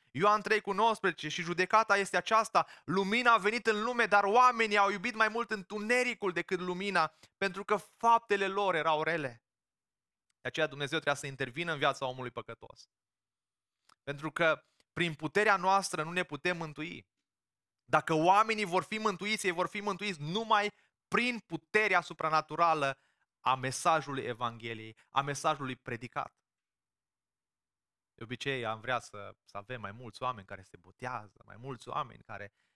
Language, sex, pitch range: Romanian, male, 125-205 Hz